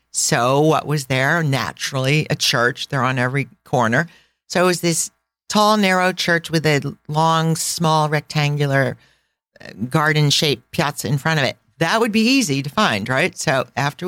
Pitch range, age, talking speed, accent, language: 135-165 Hz, 50-69, 160 wpm, American, English